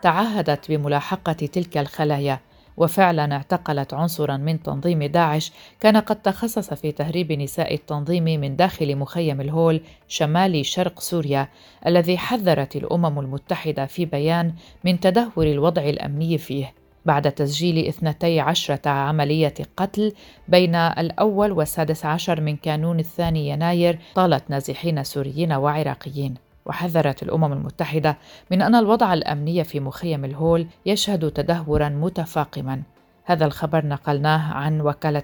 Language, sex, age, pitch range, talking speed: Arabic, female, 40-59, 145-175 Hz, 120 wpm